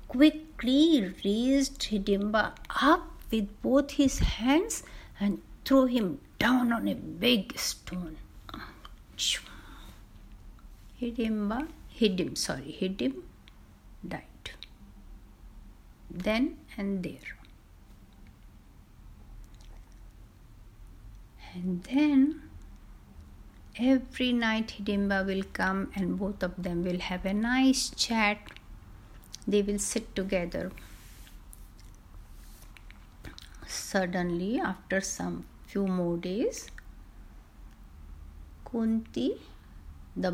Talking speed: 75 wpm